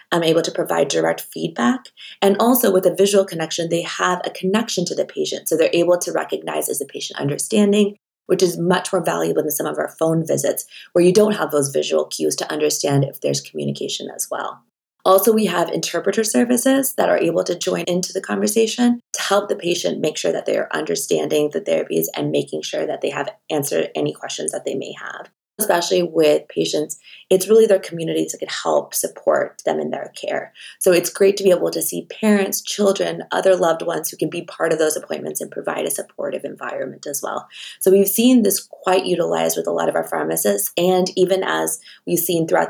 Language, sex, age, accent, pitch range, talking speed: English, female, 20-39, American, 155-200 Hz, 210 wpm